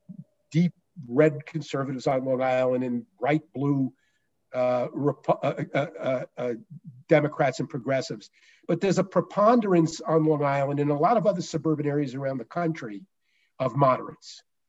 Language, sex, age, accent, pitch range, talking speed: English, male, 50-69, American, 140-175 Hz, 145 wpm